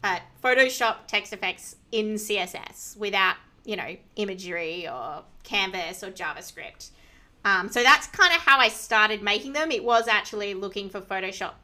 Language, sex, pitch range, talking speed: English, female, 195-235 Hz, 150 wpm